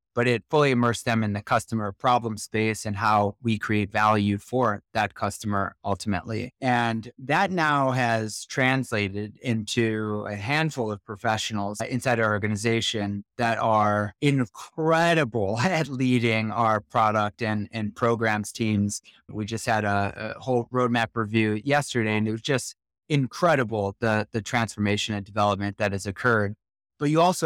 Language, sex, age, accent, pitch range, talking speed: English, male, 30-49, American, 105-125 Hz, 150 wpm